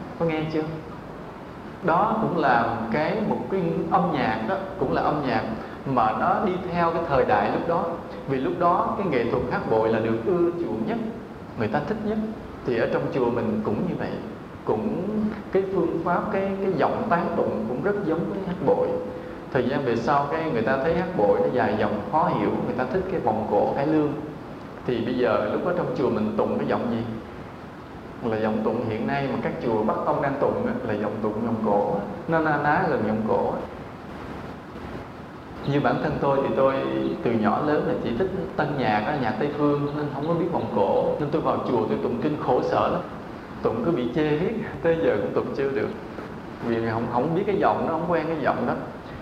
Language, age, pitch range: English, 20-39, 125-175 Hz